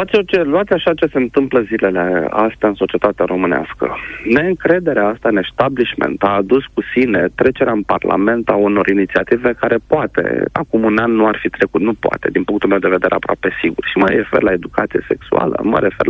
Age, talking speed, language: 40-59, 185 wpm, Romanian